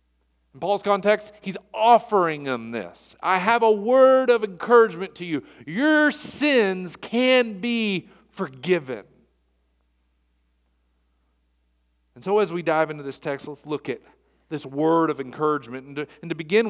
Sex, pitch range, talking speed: male, 135-210 Hz, 145 wpm